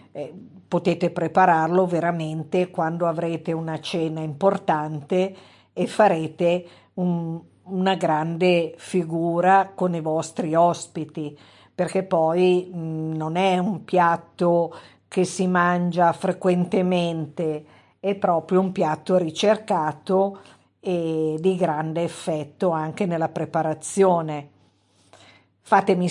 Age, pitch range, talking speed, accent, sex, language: 50-69, 160-195 Hz, 90 wpm, native, female, Italian